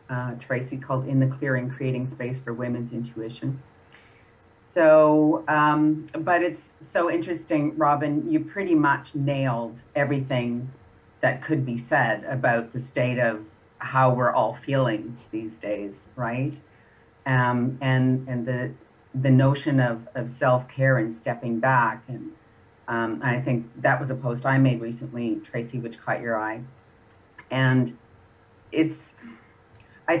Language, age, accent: English, 40-59, American